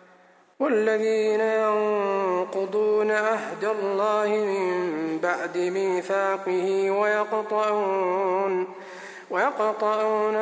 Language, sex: Arabic, male